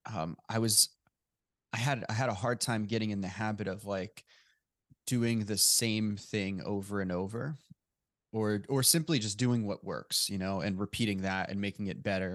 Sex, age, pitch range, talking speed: male, 20-39, 95-110 Hz, 190 wpm